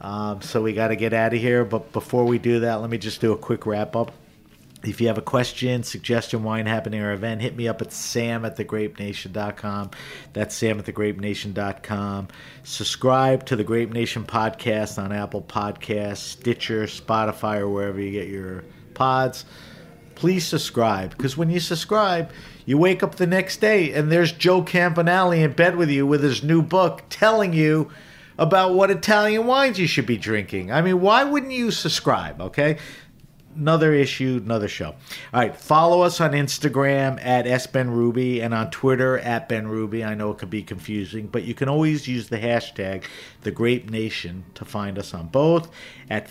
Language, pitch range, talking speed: English, 110-145 Hz, 180 wpm